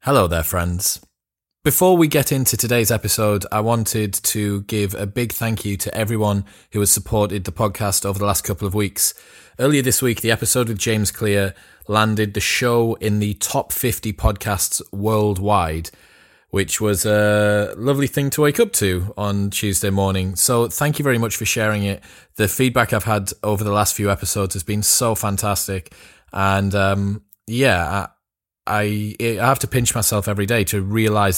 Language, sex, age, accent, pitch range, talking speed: English, male, 20-39, British, 100-120 Hz, 180 wpm